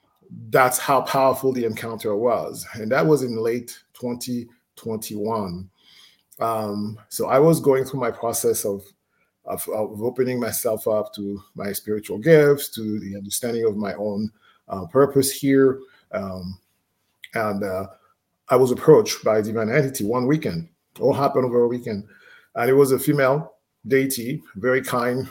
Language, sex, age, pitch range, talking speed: English, male, 30-49, 110-135 Hz, 155 wpm